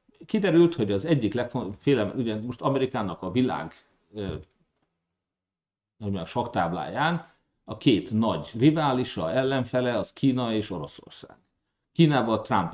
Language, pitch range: Hungarian, 90-120 Hz